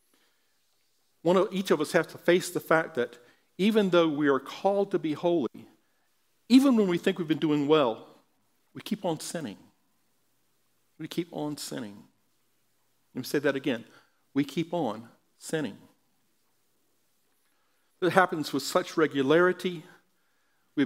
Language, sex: English, male